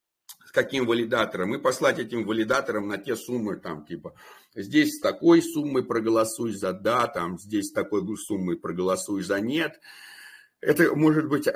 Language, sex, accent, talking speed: Russian, male, native, 155 wpm